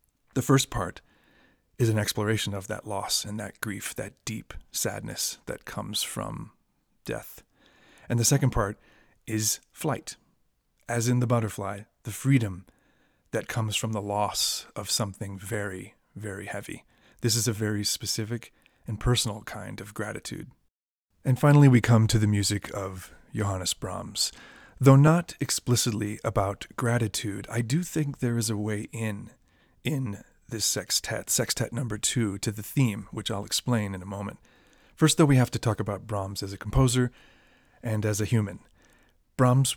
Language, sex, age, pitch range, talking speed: English, male, 30-49, 100-120 Hz, 160 wpm